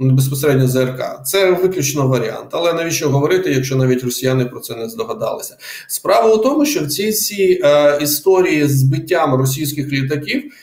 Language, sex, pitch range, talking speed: Ukrainian, male, 130-180 Hz, 150 wpm